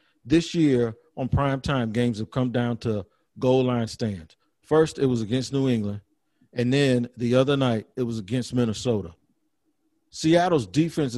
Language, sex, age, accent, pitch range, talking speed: English, male, 50-69, American, 120-155 Hz, 155 wpm